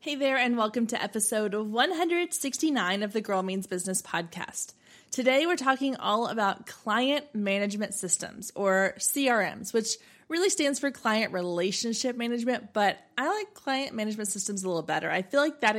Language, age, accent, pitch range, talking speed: English, 20-39, American, 195-250 Hz, 165 wpm